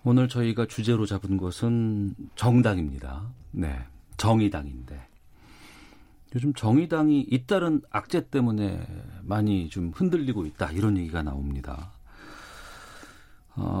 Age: 40-59